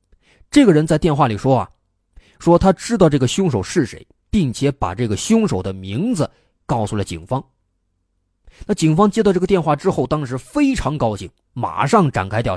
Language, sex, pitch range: Chinese, male, 100-155 Hz